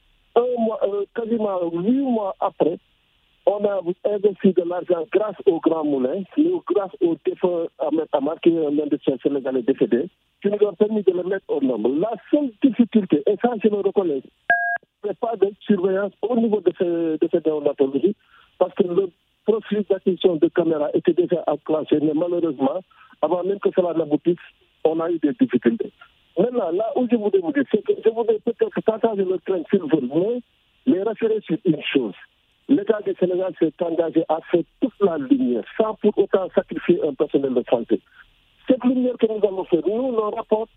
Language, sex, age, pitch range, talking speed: French, male, 50-69, 175-235 Hz, 185 wpm